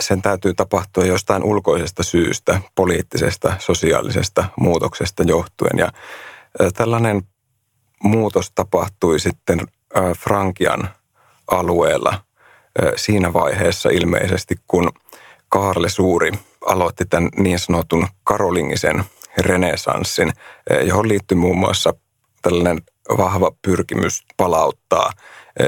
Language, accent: Finnish, native